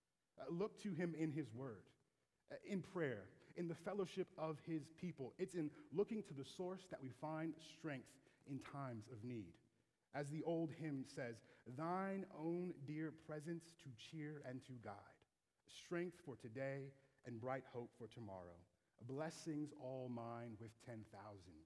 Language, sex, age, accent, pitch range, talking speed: English, male, 30-49, American, 125-170 Hz, 160 wpm